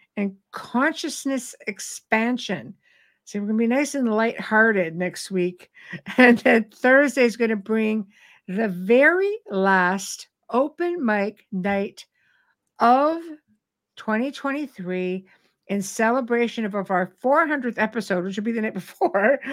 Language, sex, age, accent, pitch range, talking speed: English, female, 60-79, American, 205-260 Hz, 120 wpm